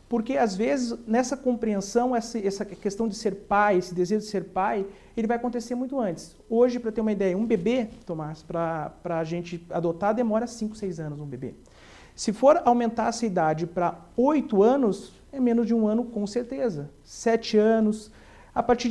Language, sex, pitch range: Portuguese, male, 180-235 Hz